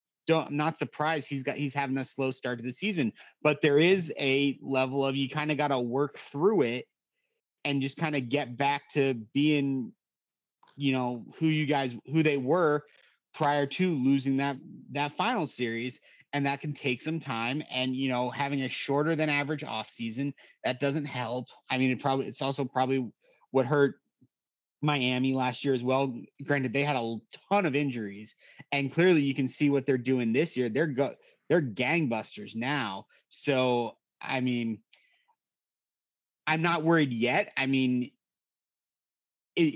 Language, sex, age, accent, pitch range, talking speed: English, male, 30-49, American, 130-150 Hz, 170 wpm